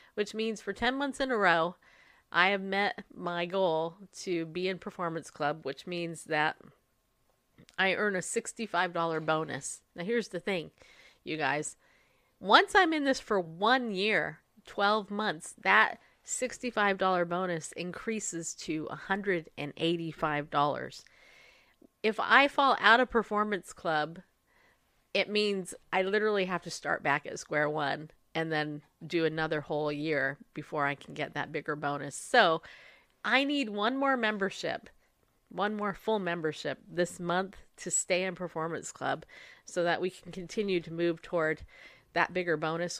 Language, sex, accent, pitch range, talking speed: English, female, American, 160-215 Hz, 150 wpm